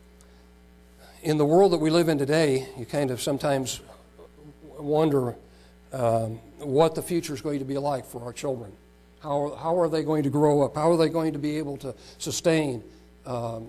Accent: American